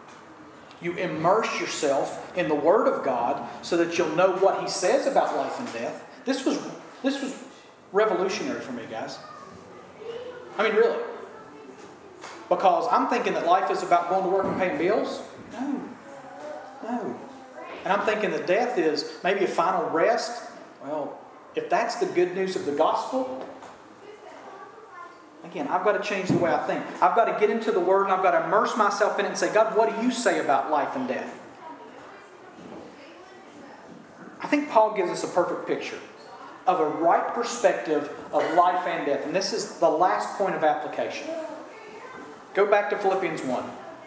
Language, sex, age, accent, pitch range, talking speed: English, male, 40-59, American, 190-315 Hz, 175 wpm